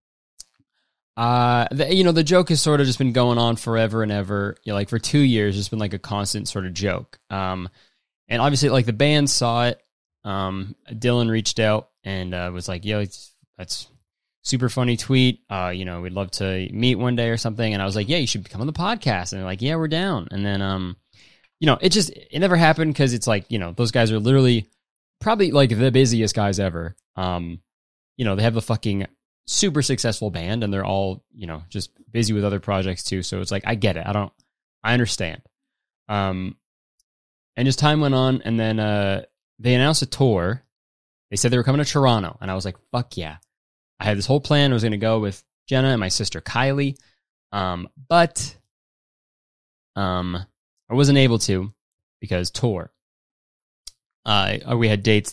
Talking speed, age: 205 wpm, 20-39